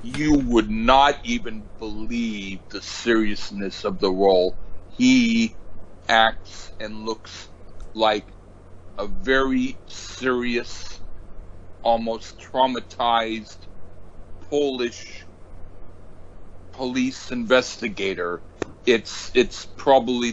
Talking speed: 75 wpm